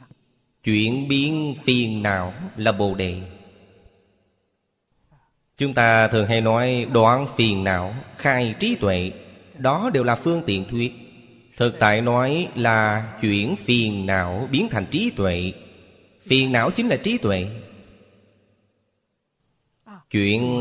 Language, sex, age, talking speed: Vietnamese, male, 30-49, 120 wpm